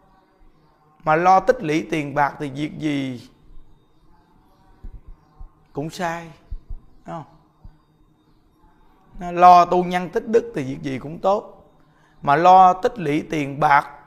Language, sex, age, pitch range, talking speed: Vietnamese, male, 20-39, 145-175 Hz, 120 wpm